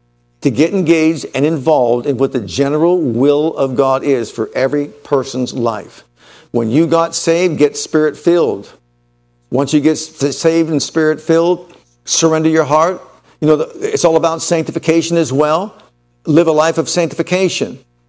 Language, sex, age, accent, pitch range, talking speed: English, male, 50-69, American, 140-165 Hz, 150 wpm